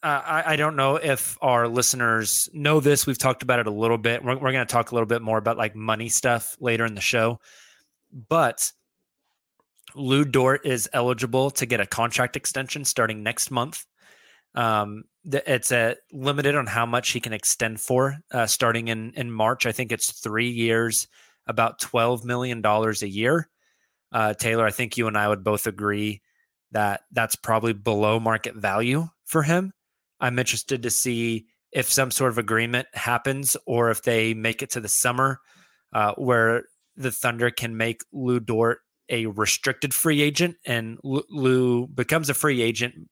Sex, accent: male, American